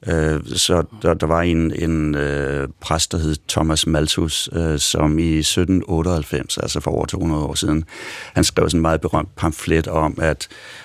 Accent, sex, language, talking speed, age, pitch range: native, male, Danish, 160 wpm, 60-79, 80-90 Hz